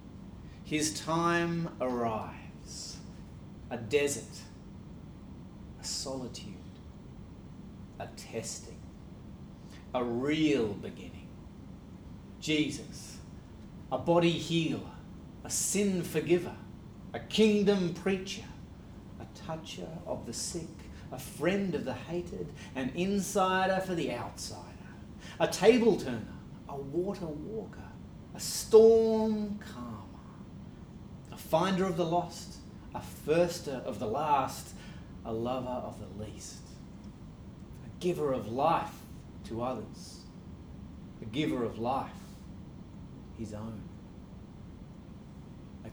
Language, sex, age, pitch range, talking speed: English, male, 40-59, 110-175 Hz, 95 wpm